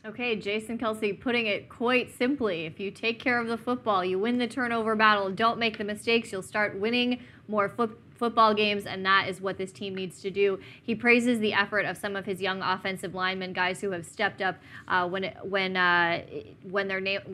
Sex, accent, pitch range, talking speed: female, American, 190-220 Hz, 220 wpm